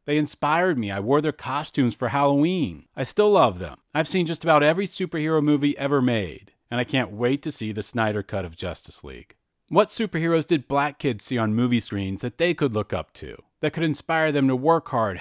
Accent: American